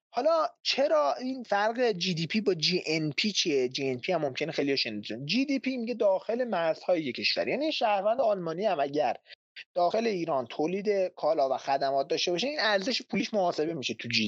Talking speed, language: 195 wpm, Persian